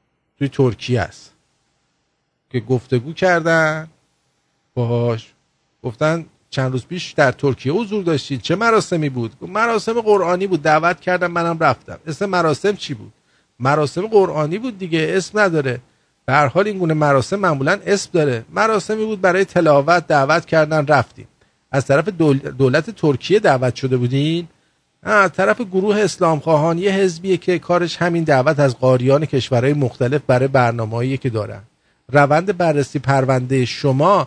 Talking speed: 140 wpm